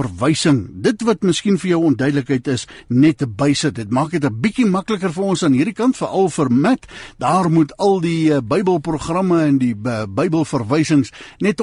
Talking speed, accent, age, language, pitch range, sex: 175 wpm, Dutch, 60-79, English, 130-190 Hz, male